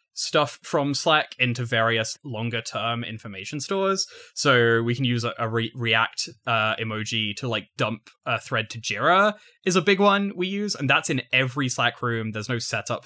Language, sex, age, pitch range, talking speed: English, male, 20-39, 110-150 Hz, 190 wpm